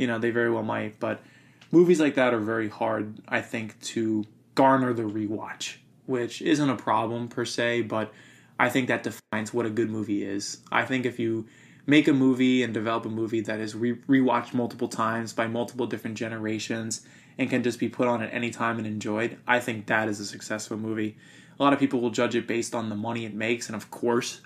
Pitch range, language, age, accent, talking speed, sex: 110-135 Hz, English, 20-39, American, 220 wpm, male